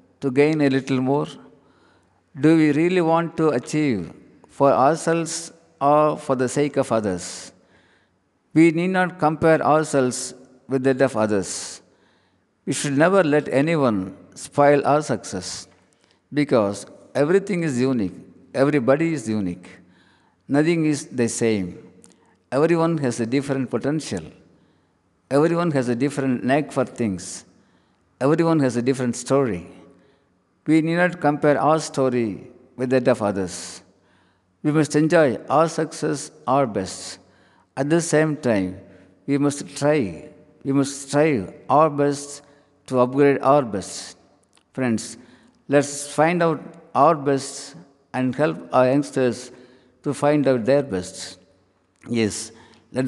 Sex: male